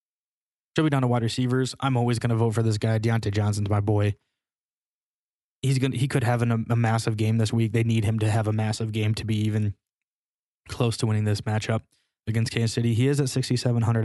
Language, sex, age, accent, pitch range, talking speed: English, male, 20-39, American, 105-120 Hz, 230 wpm